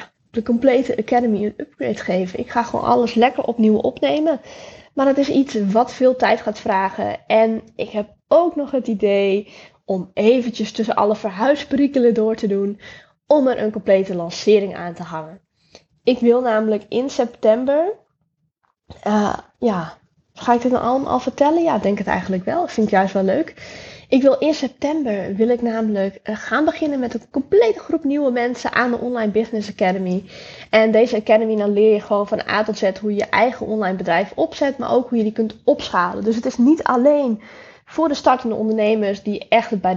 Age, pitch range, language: 10-29, 210-265 Hz, Dutch